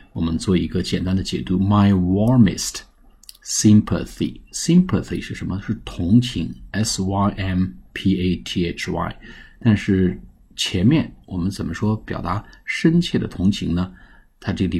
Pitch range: 90-105 Hz